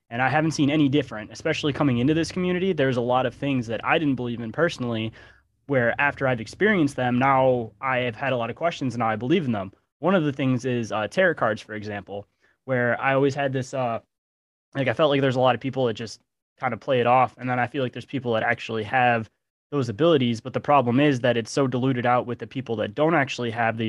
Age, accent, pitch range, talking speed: 20-39, American, 120-140 Hz, 255 wpm